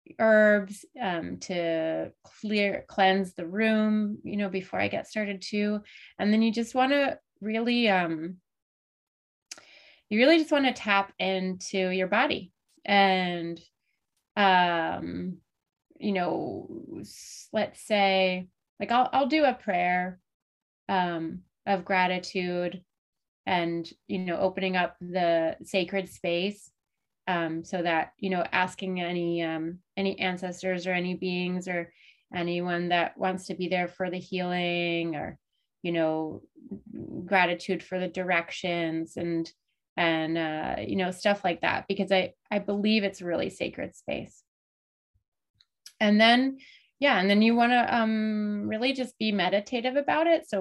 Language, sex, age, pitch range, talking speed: English, female, 30-49, 175-210 Hz, 140 wpm